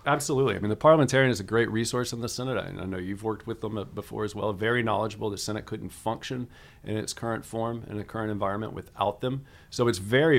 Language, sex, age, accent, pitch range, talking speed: English, male, 40-59, American, 100-120 Hz, 230 wpm